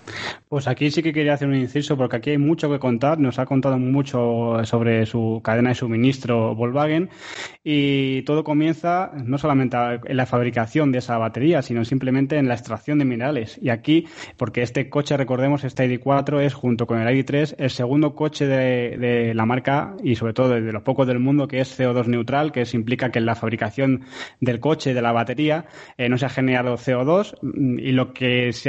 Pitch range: 120-140 Hz